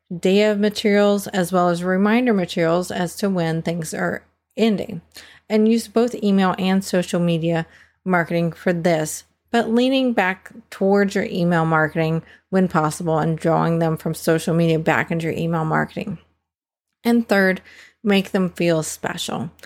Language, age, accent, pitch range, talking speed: English, 40-59, American, 175-220 Hz, 155 wpm